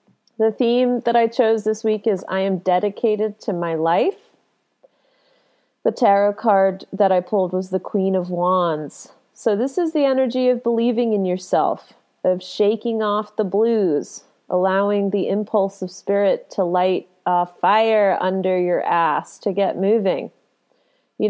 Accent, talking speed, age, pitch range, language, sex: American, 155 wpm, 30-49, 190-250 Hz, English, female